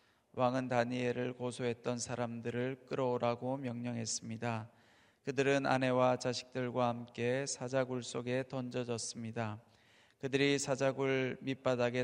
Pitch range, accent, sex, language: 120-135 Hz, native, male, Korean